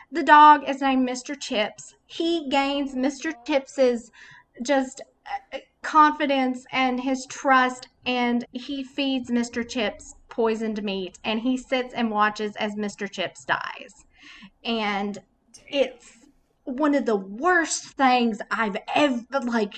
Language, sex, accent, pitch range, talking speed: English, female, American, 225-285 Hz, 125 wpm